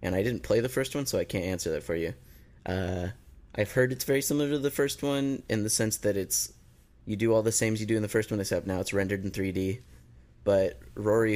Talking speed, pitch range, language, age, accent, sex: 260 wpm, 90-105 Hz, English, 20-39, American, male